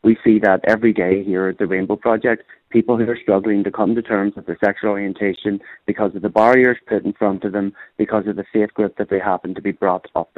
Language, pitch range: English, 100-115 Hz